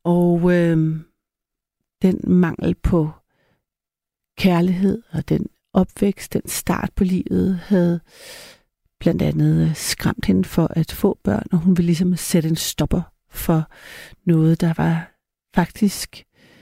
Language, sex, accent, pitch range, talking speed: Danish, female, native, 175-200 Hz, 125 wpm